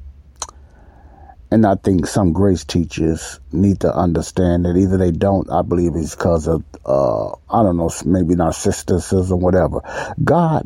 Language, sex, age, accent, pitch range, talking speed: English, male, 60-79, American, 85-105 Hz, 150 wpm